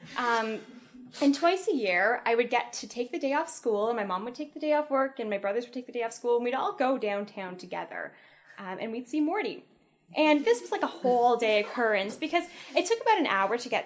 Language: English